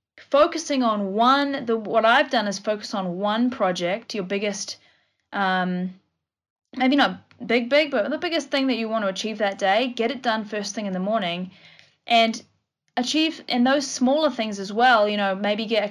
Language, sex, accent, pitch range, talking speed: English, female, Australian, 195-250 Hz, 190 wpm